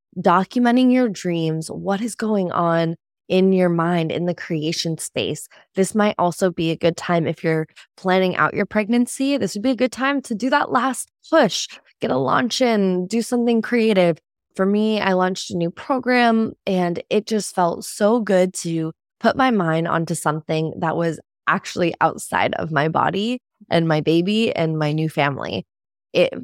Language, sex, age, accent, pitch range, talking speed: English, female, 20-39, American, 170-220 Hz, 180 wpm